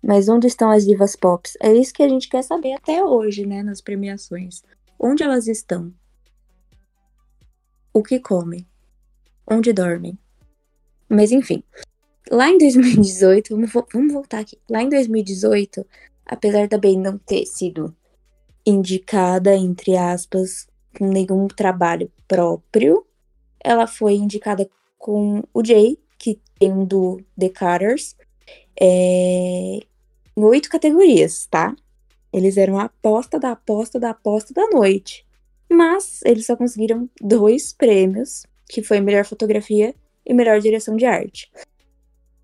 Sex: female